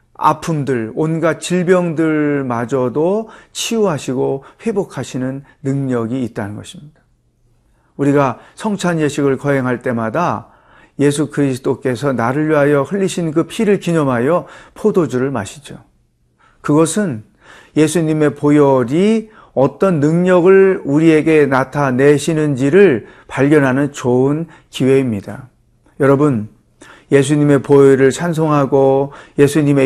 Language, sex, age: Korean, male, 40-59